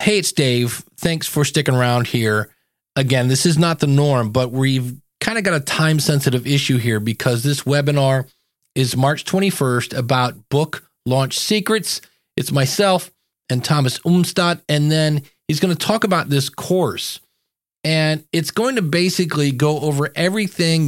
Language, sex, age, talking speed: English, male, 40-59, 160 wpm